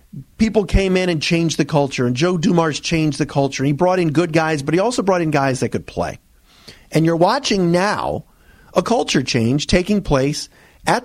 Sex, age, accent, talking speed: male, 50-69, American, 200 wpm